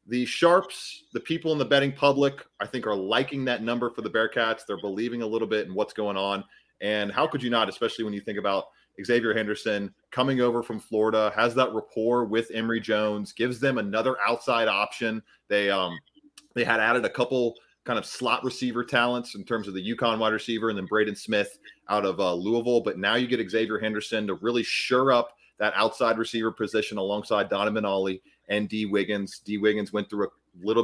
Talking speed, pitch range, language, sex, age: 205 wpm, 105-120 Hz, English, male, 30-49